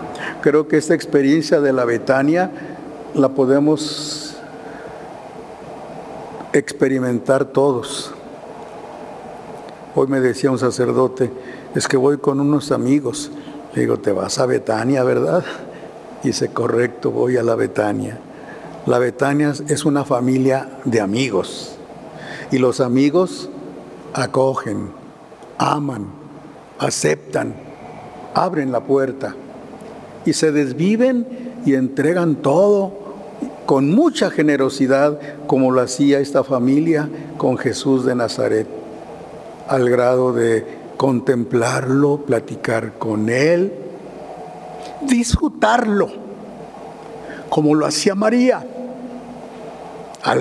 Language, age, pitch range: Spanish, 60-79, 130-160 Hz